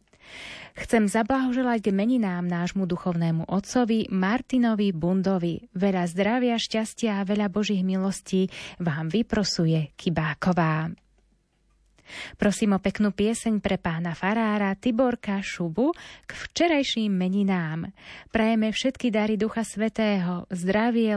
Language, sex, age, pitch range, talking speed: Slovak, female, 20-39, 180-225 Hz, 100 wpm